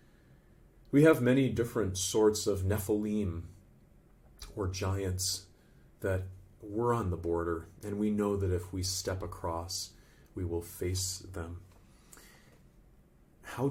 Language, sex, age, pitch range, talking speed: English, male, 30-49, 90-115 Hz, 120 wpm